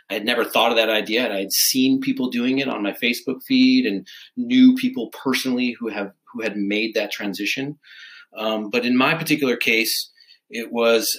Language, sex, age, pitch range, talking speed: English, male, 30-49, 100-130 Hz, 200 wpm